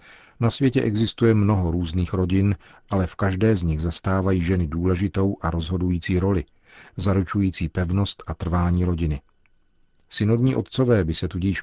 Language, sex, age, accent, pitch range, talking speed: Czech, male, 50-69, native, 85-100 Hz, 140 wpm